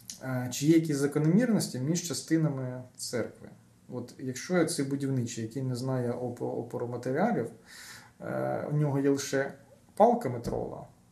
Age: 20-39